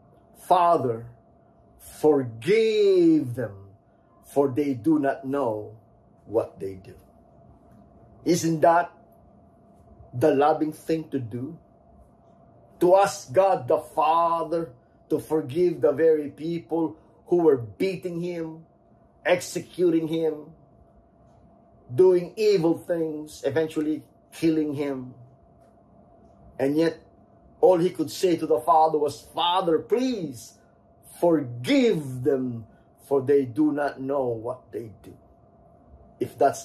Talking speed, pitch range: 105 wpm, 120-170 Hz